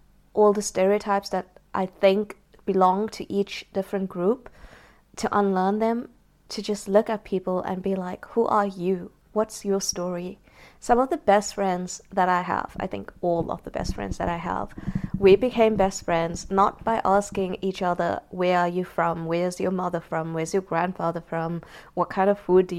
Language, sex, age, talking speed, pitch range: English, female, 20-39, 190 wpm, 175-200 Hz